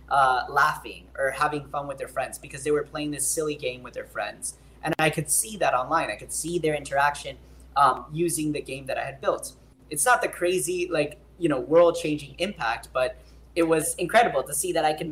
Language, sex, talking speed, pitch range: English, male, 220 wpm, 140-175 Hz